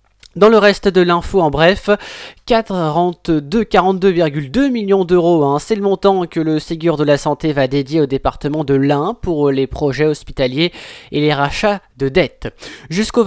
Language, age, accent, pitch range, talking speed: French, 20-39, French, 140-195 Hz, 165 wpm